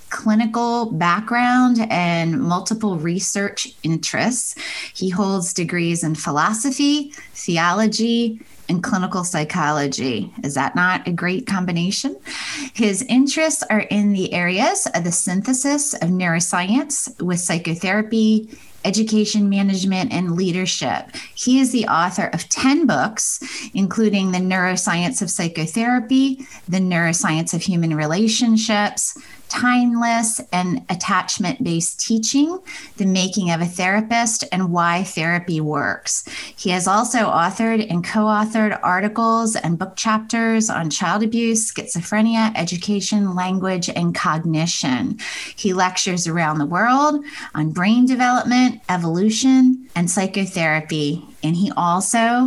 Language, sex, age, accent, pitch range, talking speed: English, female, 20-39, American, 175-235 Hz, 115 wpm